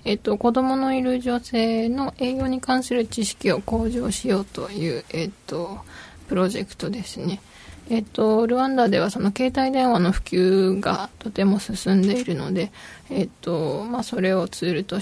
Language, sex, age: Japanese, female, 20-39